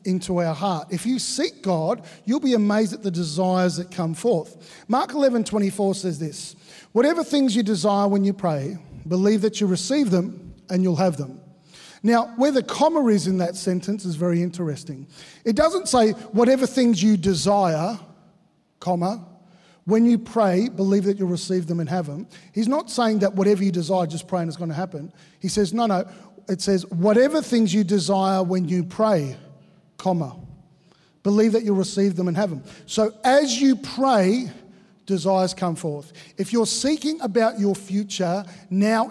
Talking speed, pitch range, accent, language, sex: 180 wpm, 180-215 Hz, Australian, English, male